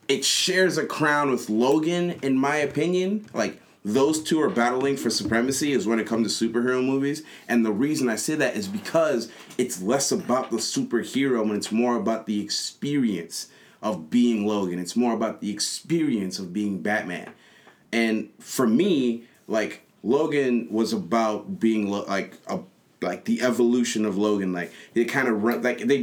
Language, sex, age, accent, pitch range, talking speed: English, male, 30-49, American, 105-130 Hz, 175 wpm